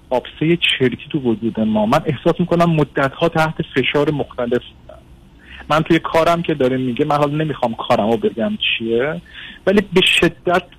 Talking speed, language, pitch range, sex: 160 wpm, Persian, 125-155 Hz, male